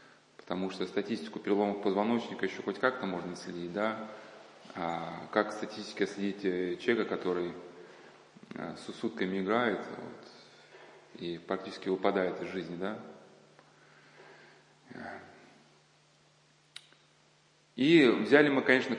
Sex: male